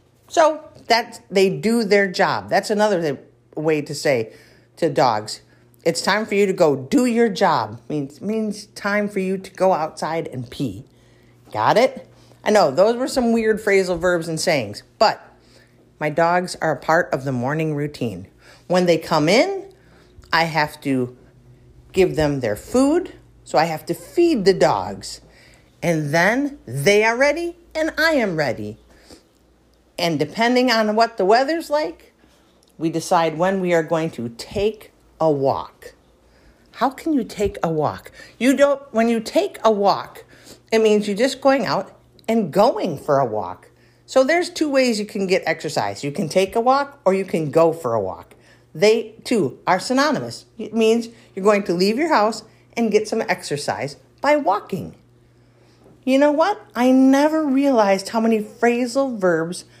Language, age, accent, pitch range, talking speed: English, 50-69, American, 160-235 Hz, 175 wpm